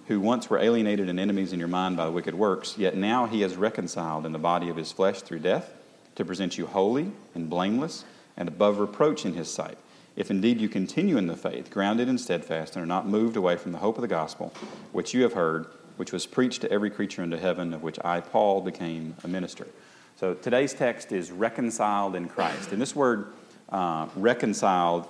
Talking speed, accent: 215 wpm, American